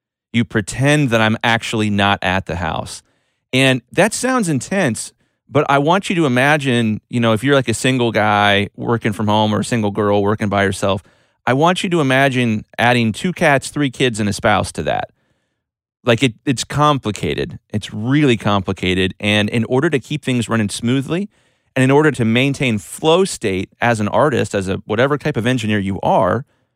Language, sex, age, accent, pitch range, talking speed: English, male, 30-49, American, 105-135 Hz, 190 wpm